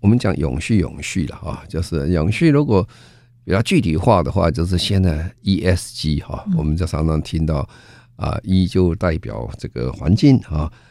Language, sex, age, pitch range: Chinese, male, 50-69, 80-115 Hz